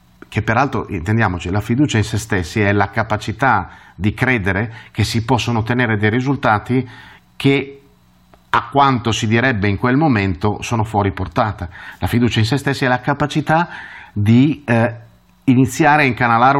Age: 30-49